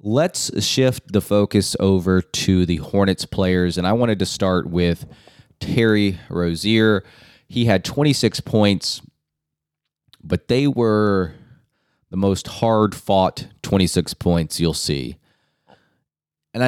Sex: male